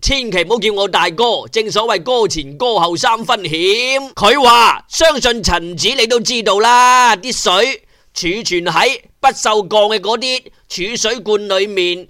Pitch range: 205-260 Hz